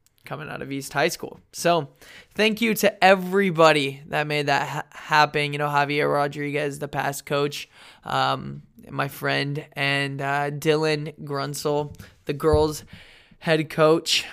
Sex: male